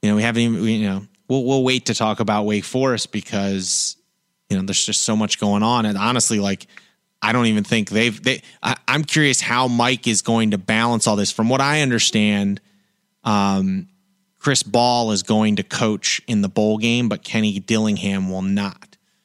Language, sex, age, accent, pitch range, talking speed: English, male, 30-49, American, 100-125 Hz, 195 wpm